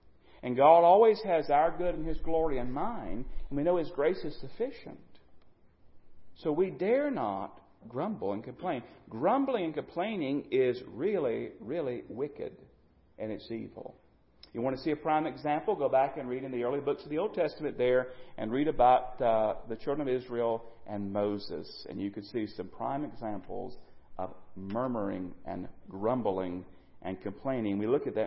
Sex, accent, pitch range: male, American, 100-165 Hz